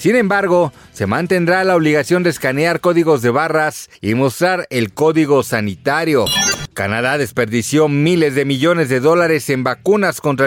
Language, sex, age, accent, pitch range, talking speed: Spanish, male, 40-59, Mexican, 135-185 Hz, 150 wpm